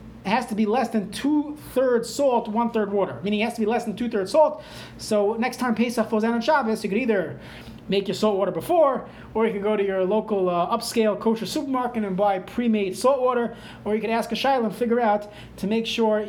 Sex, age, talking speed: male, 30-49, 245 wpm